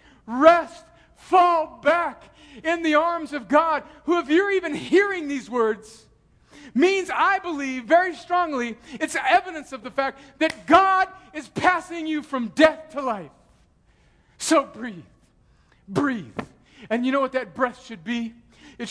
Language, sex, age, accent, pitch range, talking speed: English, male, 50-69, American, 180-275 Hz, 145 wpm